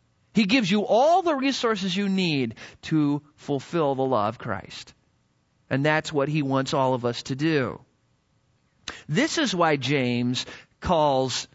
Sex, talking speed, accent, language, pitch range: male, 150 wpm, American, English, 135-200 Hz